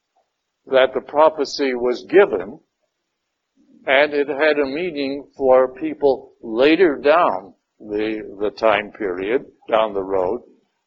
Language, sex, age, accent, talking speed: English, male, 60-79, American, 115 wpm